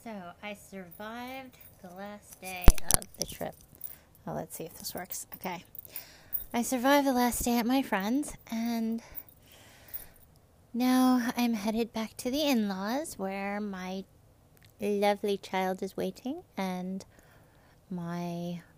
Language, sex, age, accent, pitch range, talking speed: English, female, 30-49, American, 170-230 Hz, 130 wpm